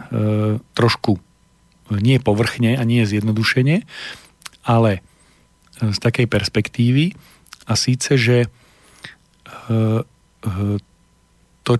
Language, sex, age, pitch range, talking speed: Slovak, male, 40-59, 110-125 Hz, 70 wpm